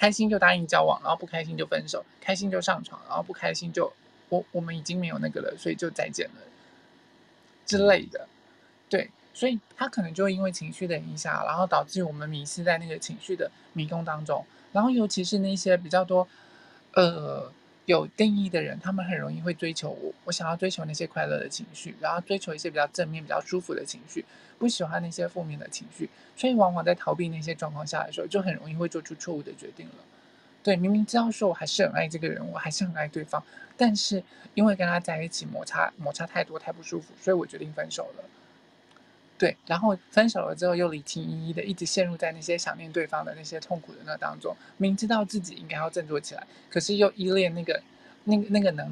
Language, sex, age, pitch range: Chinese, male, 20-39, 165-205 Hz